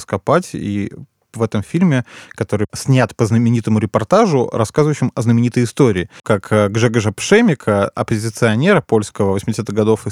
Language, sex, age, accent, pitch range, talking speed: Russian, male, 20-39, native, 105-130 Hz, 130 wpm